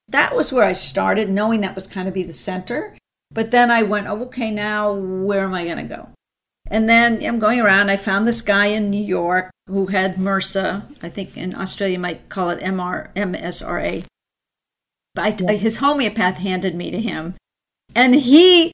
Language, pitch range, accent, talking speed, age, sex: English, 190-230 Hz, American, 200 wpm, 50-69, female